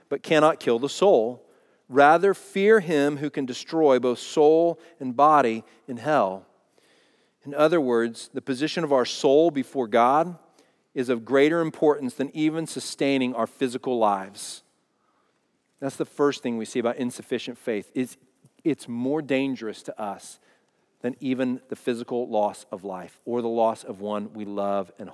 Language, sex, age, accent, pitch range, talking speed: English, male, 40-59, American, 120-155 Hz, 160 wpm